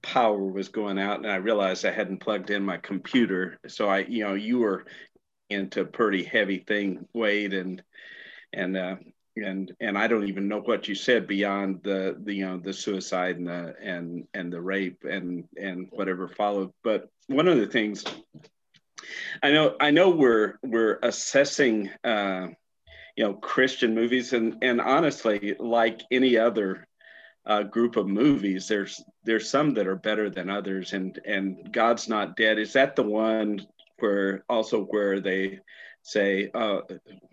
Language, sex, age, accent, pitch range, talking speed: English, male, 50-69, American, 95-115 Hz, 165 wpm